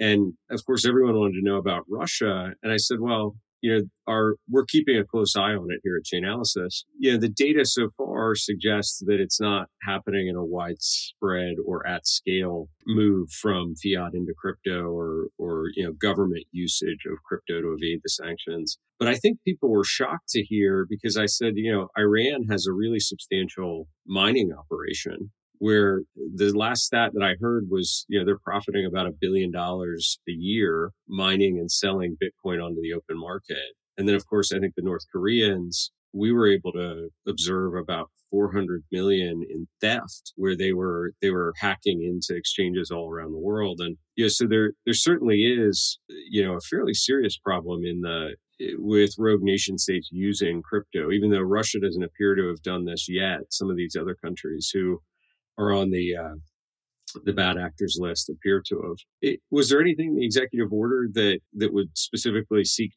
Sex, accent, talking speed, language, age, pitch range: male, American, 190 wpm, English, 40-59, 90-105 Hz